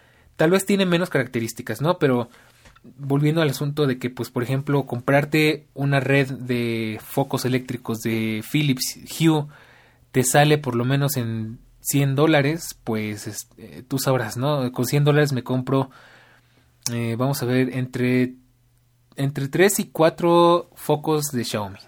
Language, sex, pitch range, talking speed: Spanish, male, 120-155 Hz, 145 wpm